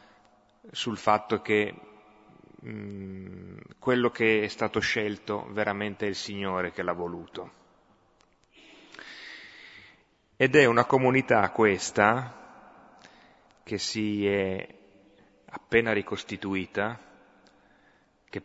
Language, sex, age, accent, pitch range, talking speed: Italian, male, 30-49, native, 95-105 Hz, 85 wpm